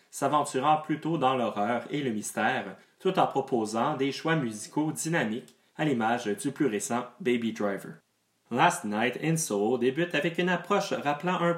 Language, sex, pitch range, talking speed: English, male, 120-175 Hz, 155 wpm